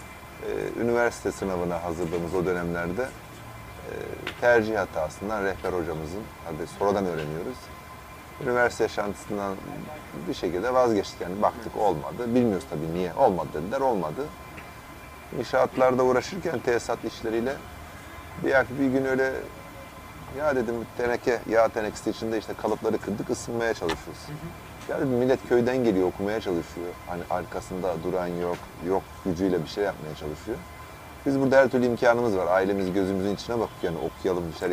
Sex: male